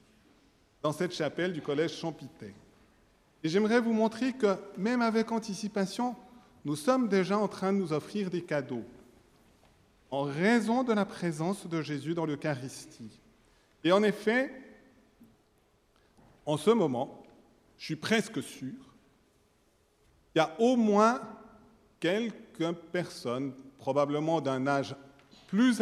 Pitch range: 145-220 Hz